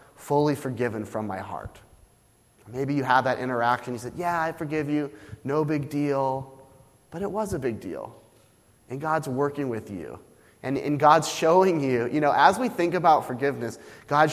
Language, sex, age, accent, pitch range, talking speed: English, male, 30-49, American, 115-155 Hz, 180 wpm